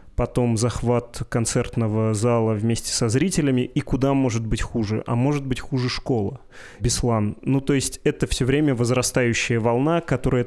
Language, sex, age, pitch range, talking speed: Russian, male, 20-39, 110-130 Hz, 155 wpm